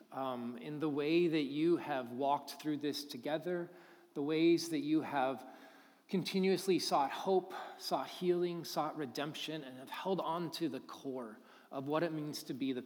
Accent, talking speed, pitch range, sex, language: American, 175 wpm, 135-170 Hz, male, English